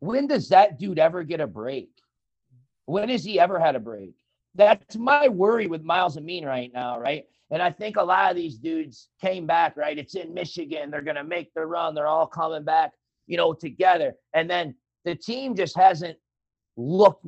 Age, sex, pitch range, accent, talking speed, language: 40-59, male, 130-180 Hz, American, 200 wpm, English